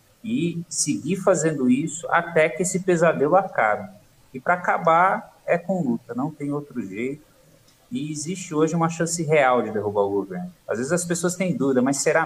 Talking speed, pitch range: 180 wpm, 120-155 Hz